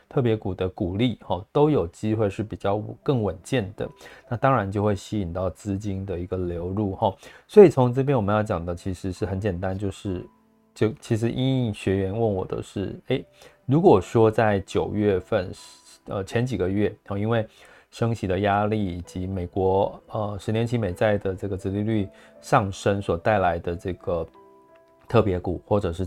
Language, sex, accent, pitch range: Chinese, male, native, 95-110 Hz